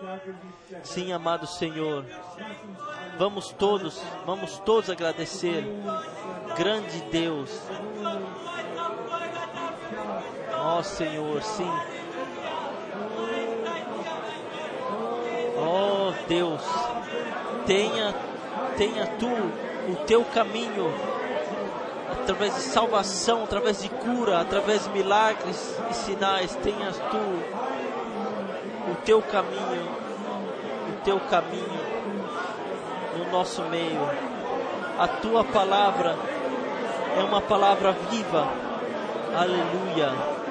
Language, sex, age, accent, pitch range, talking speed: Portuguese, male, 20-39, Brazilian, 180-225 Hz, 75 wpm